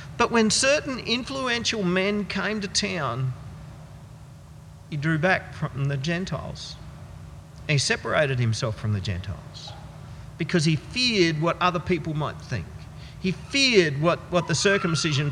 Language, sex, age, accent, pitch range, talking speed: English, male, 50-69, Australian, 130-180 Hz, 135 wpm